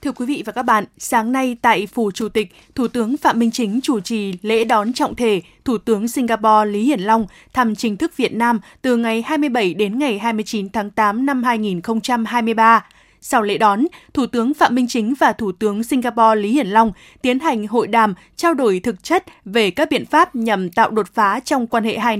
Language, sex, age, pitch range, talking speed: Vietnamese, female, 20-39, 220-270 Hz, 215 wpm